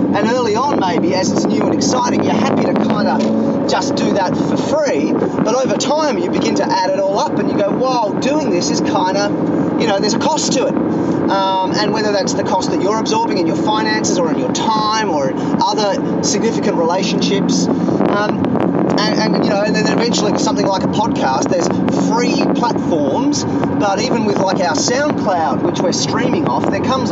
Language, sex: English, male